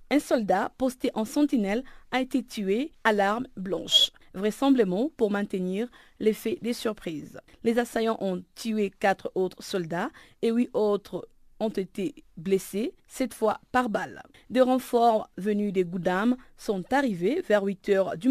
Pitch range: 195-250 Hz